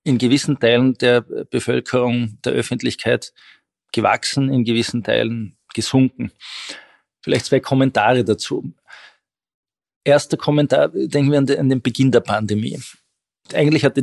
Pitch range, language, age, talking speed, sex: 110-125 Hz, German, 40-59, 115 wpm, male